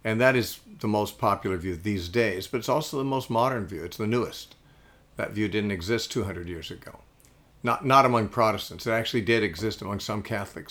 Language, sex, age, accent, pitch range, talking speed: English, male, 50-69, American, 95-115 Hz, 205 wpm